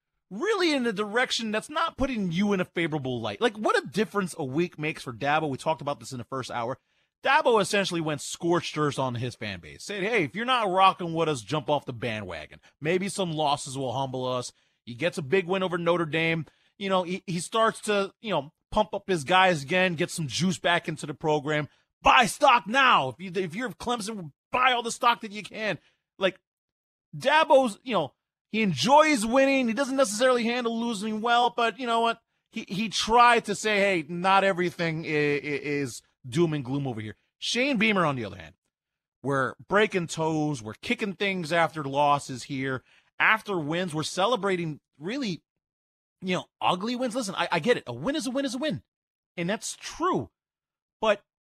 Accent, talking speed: American, 200 wpm